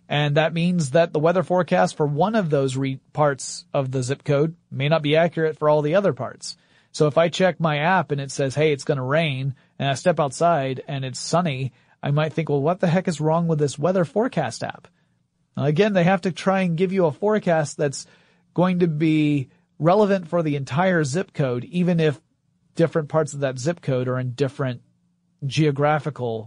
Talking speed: 210 wpm